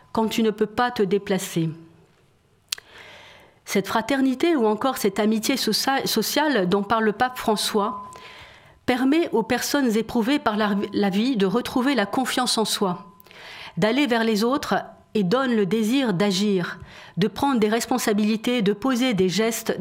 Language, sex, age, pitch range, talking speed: French, female, 40-59, 200-255 Hz, 155 wpm